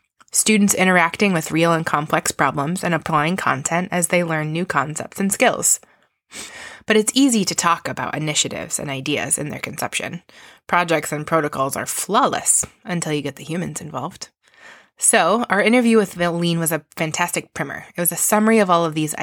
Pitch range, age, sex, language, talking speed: 155-205 Hz, 20-39, female, English, 180 wpm